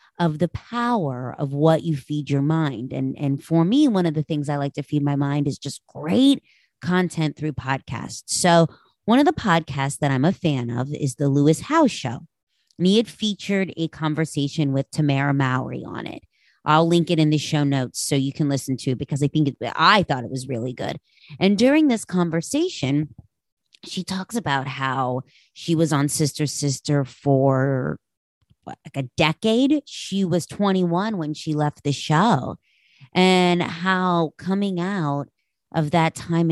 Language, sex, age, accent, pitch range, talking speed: English, female, 30-49, American, 140-190 Hz, 180 wpm